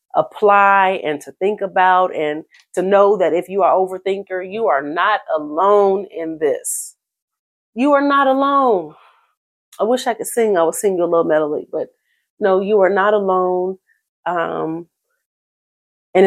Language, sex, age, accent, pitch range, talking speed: English, female, 40-59, American, 165-225 Hz, 160 wpm